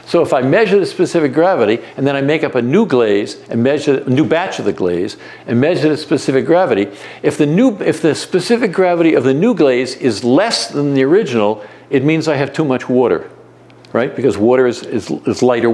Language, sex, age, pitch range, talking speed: English, male, 60-79, 130-185 Hz, 220 wpm